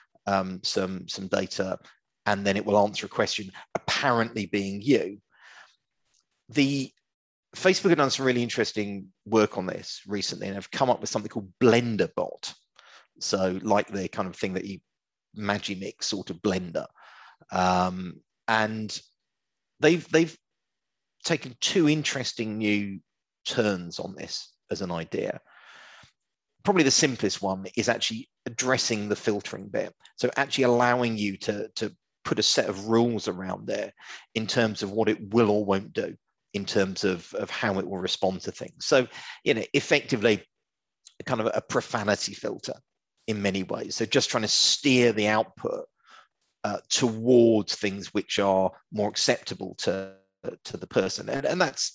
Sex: male